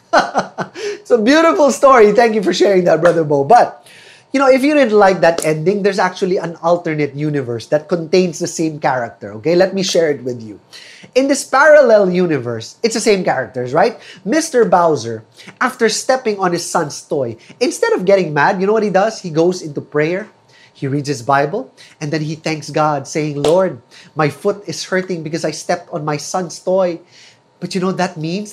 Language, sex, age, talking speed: English, male, 20-39, 200 wpm